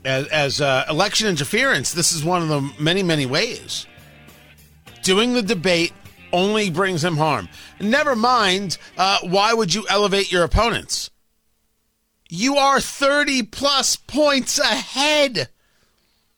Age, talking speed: 40-59, 130 wpm